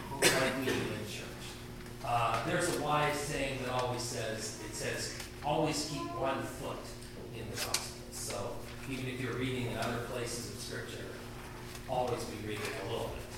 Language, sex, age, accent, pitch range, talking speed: English, male, 40-59, American, 120-195 Hz, 160 wpm